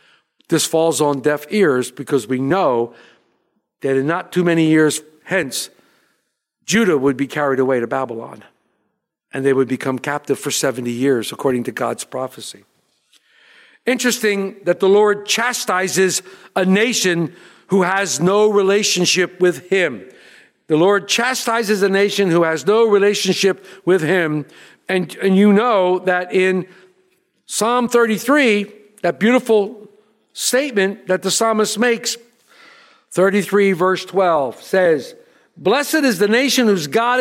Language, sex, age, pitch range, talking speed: English, male, 50-69, 185-245 Hz, 135 wpm